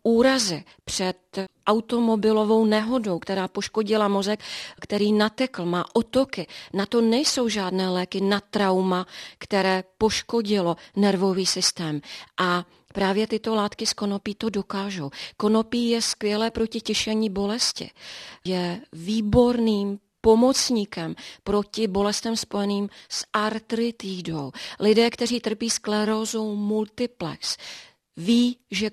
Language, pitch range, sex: Czech, 195-220 Hz, female